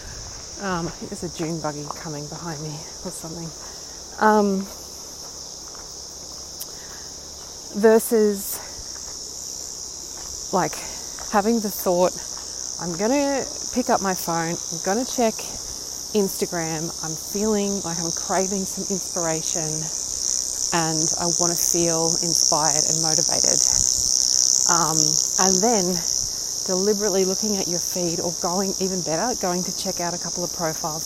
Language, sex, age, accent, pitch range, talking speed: English, female, 30-49, Australian, 160-200 Hz, 125 wpm